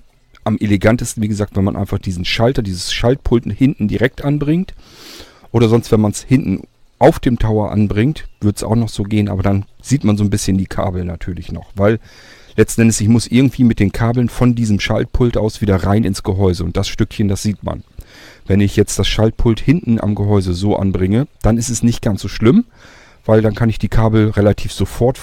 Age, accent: 40-59, German